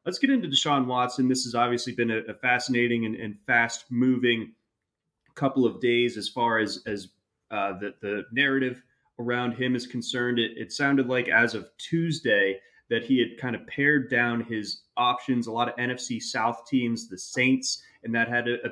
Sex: male